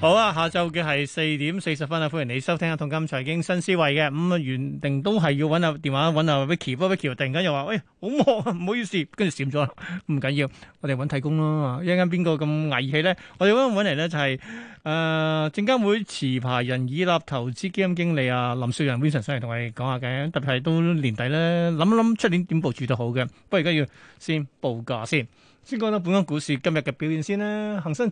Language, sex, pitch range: Chinese, male, 140-185 Hz